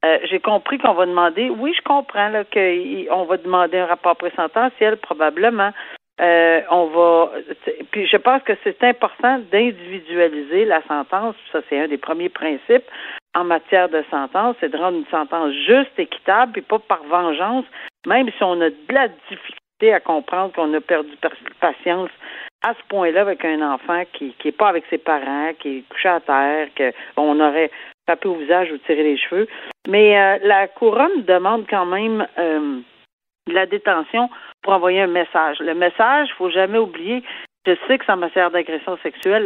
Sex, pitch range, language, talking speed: female, 165-220 Hz, French, 185 wpm